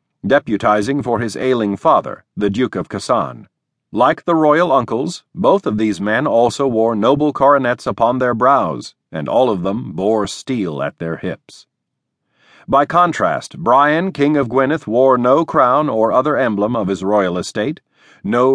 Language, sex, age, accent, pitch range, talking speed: English, male, 50-69, American, 110-145 Hz, 160 wpm